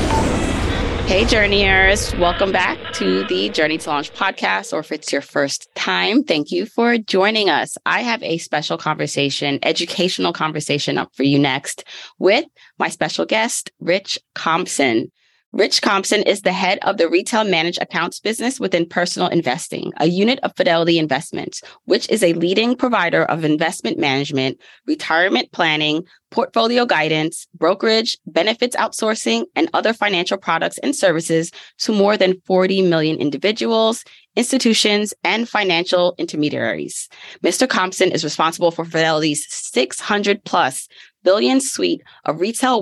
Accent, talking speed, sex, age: American, 140 wpm, female, 20-39